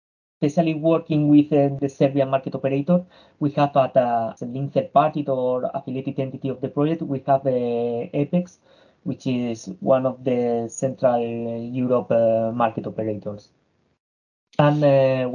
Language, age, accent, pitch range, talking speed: English, 20-39, Spanish, 120-145 Hz, 150 wpm